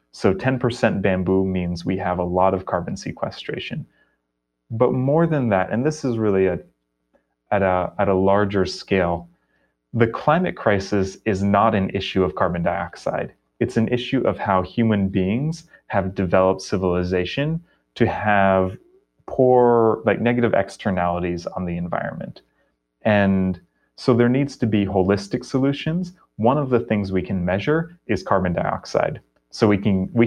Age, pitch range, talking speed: 30-49, 95-120 Hz, 150 wpm